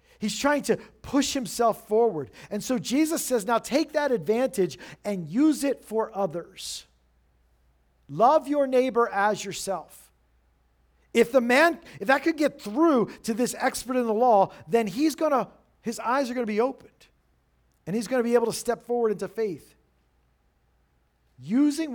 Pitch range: 160-240 Hz